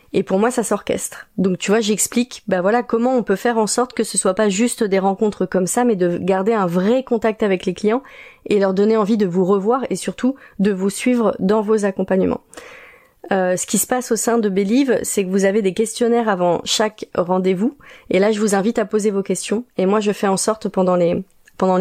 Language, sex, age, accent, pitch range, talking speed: French, female, 30-49, French, 195-230 Hz, 235 wpm